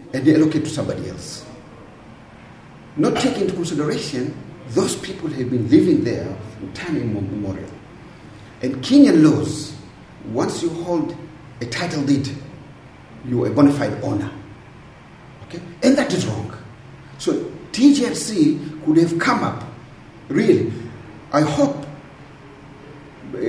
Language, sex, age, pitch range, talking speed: English, male, 40-59, 120-155 Hz, 125 wpm